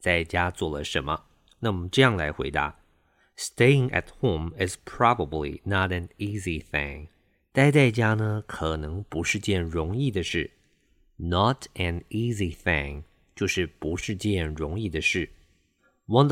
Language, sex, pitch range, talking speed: English, male, 85-115 Hz, 60 wpm